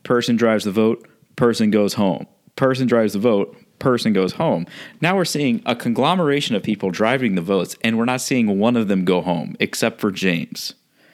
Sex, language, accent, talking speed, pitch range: male, English, American, 195 wpm, 100-145 Hz